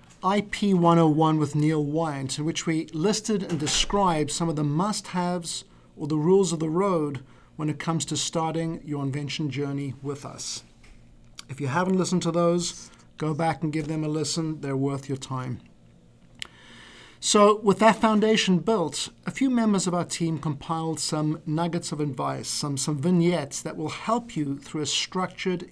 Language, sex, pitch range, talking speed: English, male, 145-175 Hz, 175 wpm